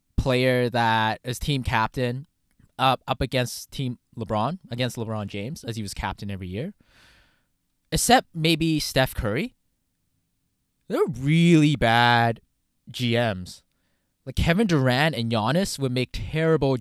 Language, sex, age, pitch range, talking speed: English, male, 20-39, 115-160 Hz, 125 wpm